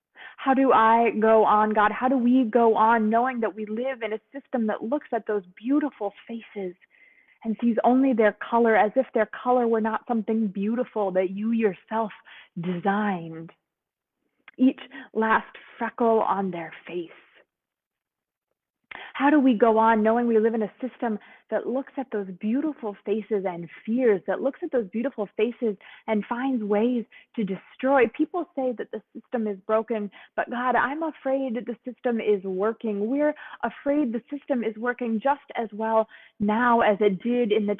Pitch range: 215-260 Hz